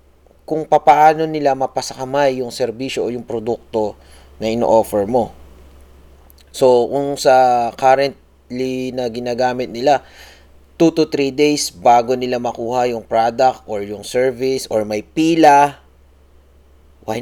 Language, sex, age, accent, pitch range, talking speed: Filipino, male, 30-49, native, 95-135 Hz, 120 wpm